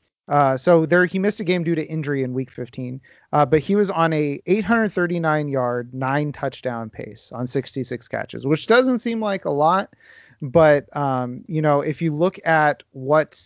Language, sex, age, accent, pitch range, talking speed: English, male, 30-49, American, 135-175 Hz, 185 wpm